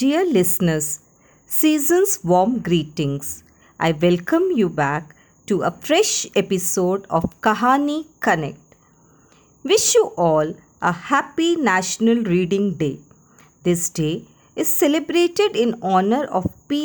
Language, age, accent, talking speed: Hindi, 50-69, native, 115 wpm